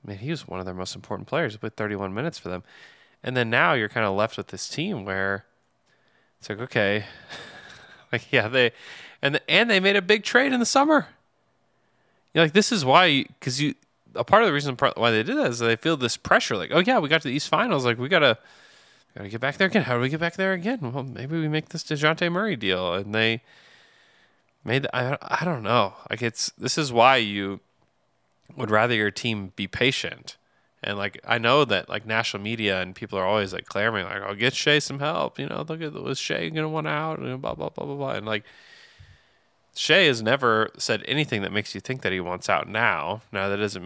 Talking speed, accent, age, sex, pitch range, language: 245 wpm, American, 20-39, male, 100-145 Hz, English